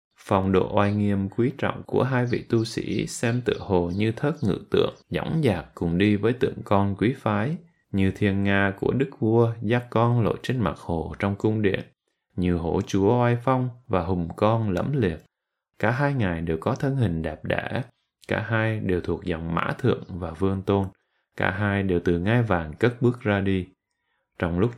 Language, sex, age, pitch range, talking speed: Vietnamese, male, 20-39, 95-120 Hz, 200 wpm